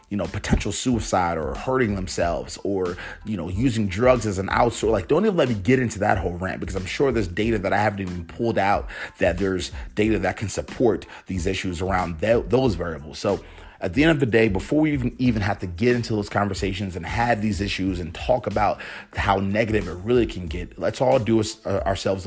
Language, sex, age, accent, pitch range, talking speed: English, male, 30-49, American, 95-115 Hz, 220 wpm